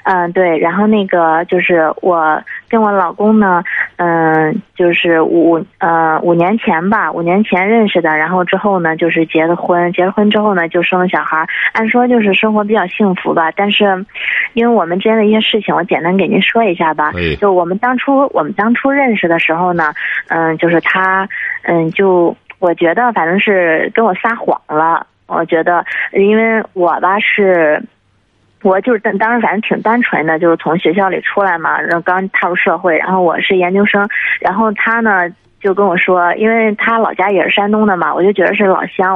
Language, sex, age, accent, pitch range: Chinese, female, 20-39, native, 170-210 Hz